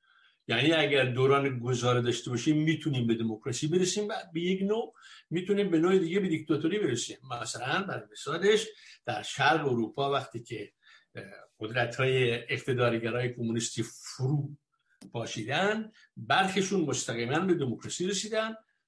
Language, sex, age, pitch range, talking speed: Persian, male, 60-79, 120-170 Hz, 125 wpm